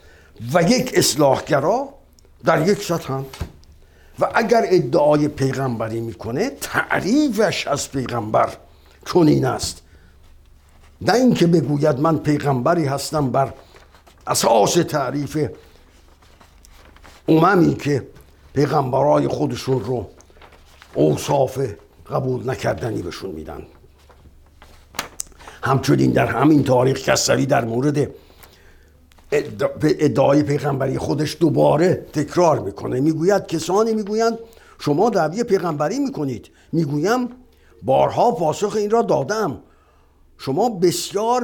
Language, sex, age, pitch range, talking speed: Persian, male, 60-79, 105-175 Hz, 95 wpm